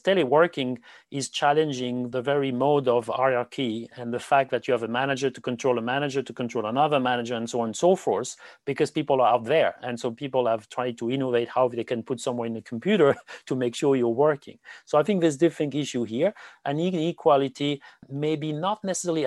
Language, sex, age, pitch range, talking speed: English, male, 40-59, 120-145 Hz, 215 wpm